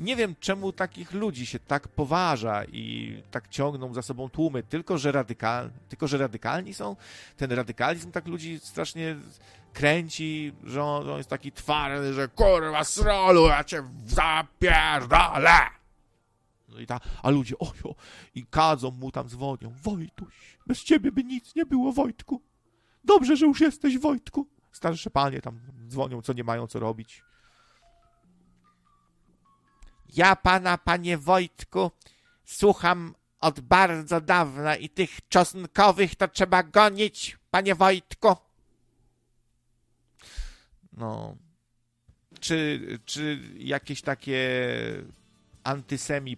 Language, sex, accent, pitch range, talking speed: Polish, male, native, 120-180 Hz, 115 wpm